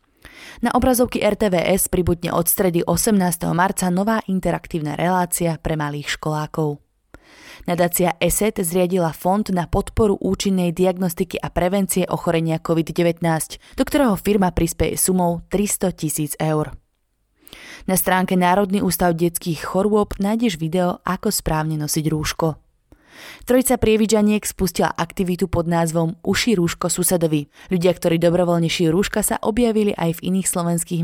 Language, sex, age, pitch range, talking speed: Slovak, female, 20-39, 165-195 Hz, 125 wpm